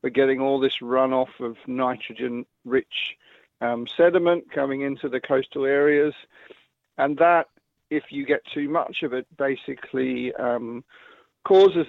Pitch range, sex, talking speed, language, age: 130-155 Hz, male, 125 wpm, English, 50-69